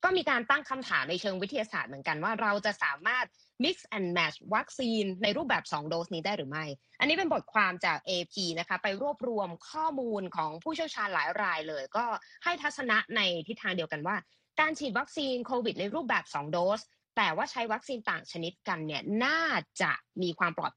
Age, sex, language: 20-39, female, Thai